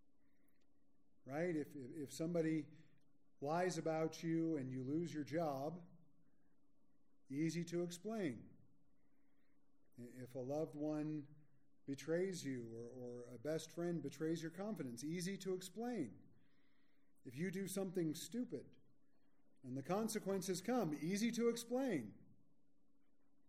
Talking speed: 115 wpm